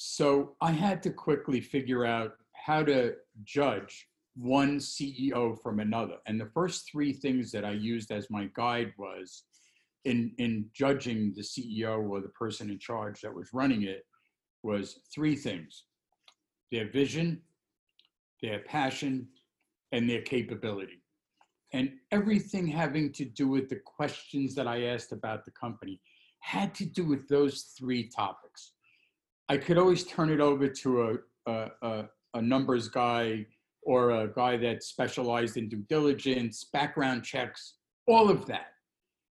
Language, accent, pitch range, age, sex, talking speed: English, American, 115-155 Hz, 50-69, male, 150 wpm